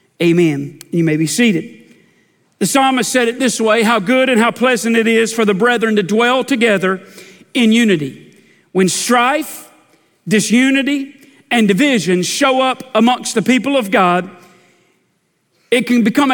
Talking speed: 150 wpm